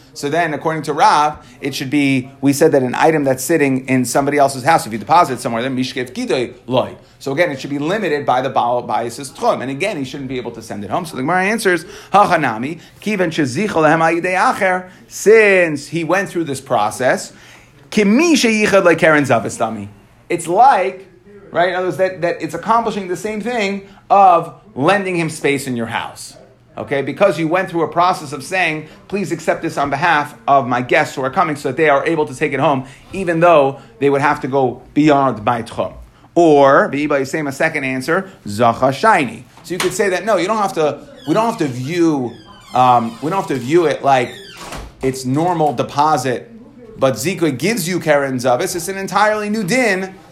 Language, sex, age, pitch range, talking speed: English, male, 30-49, 135-185 Hz, 190 wpm